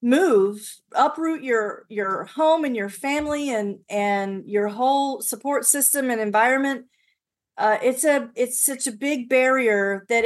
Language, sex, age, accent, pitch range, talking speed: English, female, 40-59, American, 210-260 Hz, 145 wpm